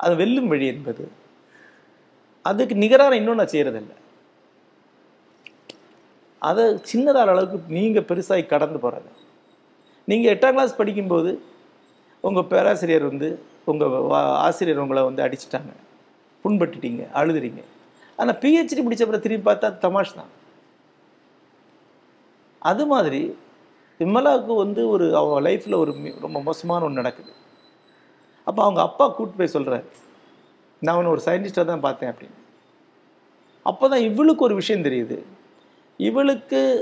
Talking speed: 110 wpm